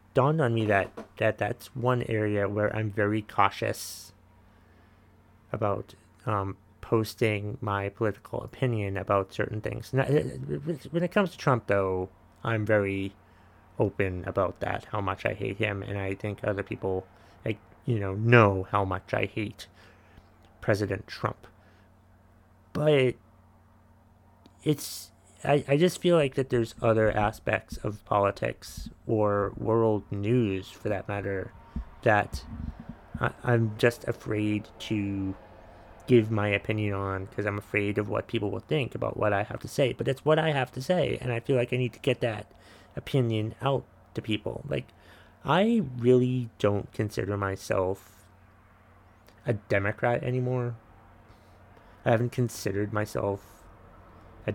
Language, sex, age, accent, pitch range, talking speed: English, male, 30-49, American, 95-115 Hz, 140 wpm